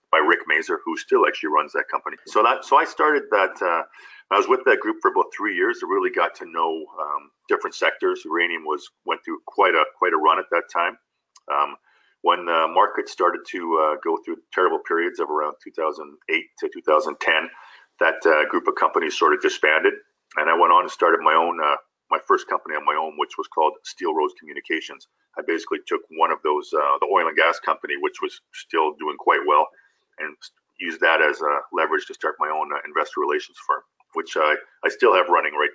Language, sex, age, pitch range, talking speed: English, male, 40-59, 370-445 Hz, 215 wpm